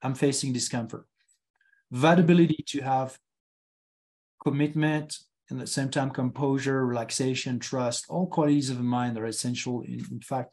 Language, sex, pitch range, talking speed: English, male, 120-145 Hz, 150 wpm